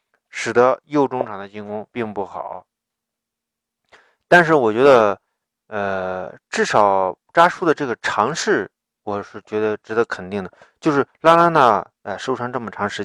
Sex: male